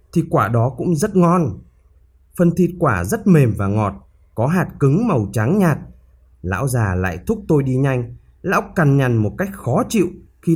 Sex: male